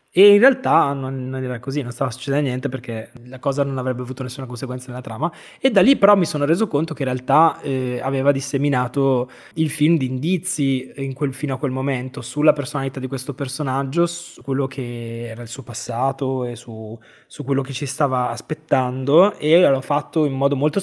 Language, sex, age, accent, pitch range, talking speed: Italian, male, 20-39, native, 125-145 Hz, 200 wpm